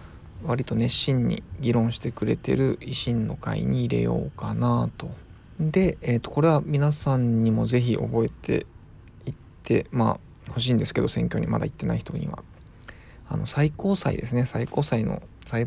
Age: 20-39